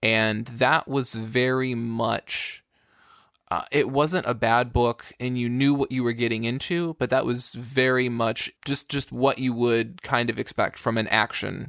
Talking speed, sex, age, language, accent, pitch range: 180 wpm, male, 20-39, English, American, 115-130 Hz